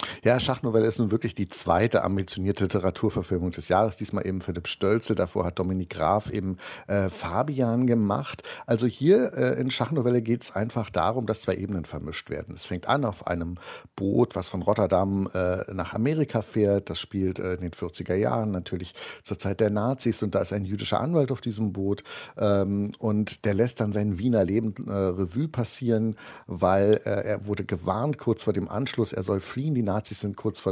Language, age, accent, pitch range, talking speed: German, 50-69, German, 95-120 Hz, 195 wpm